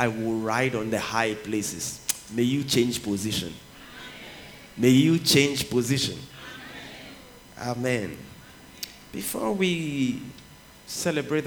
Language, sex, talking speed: English, male, 100 wpm